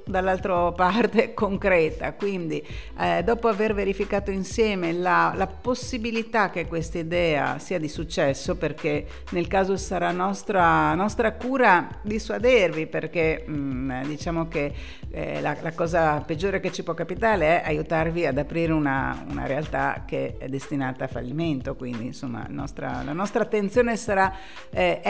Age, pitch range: 50-69, 155-210 Hz